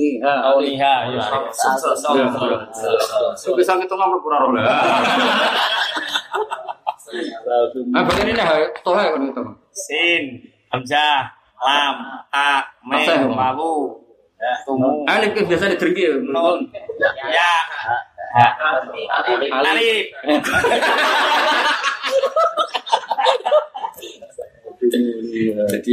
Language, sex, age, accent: Indonesian, male, 20-39, native